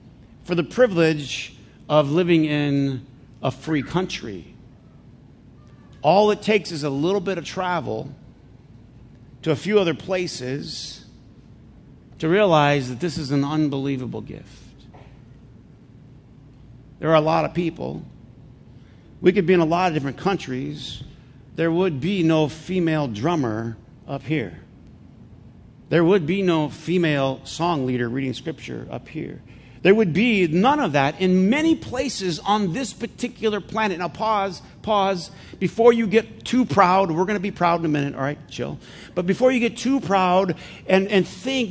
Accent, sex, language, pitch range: American, male, English, 130-185 Hz